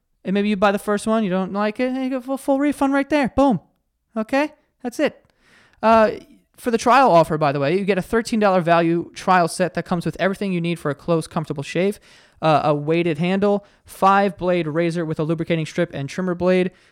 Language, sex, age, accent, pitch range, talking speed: English, male, 20-39, American, 160-205 Hz, 220 wpm